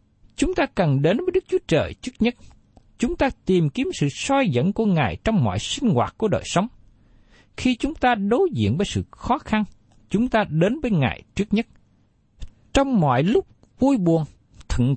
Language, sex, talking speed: Vietnamese, male, 195 wpm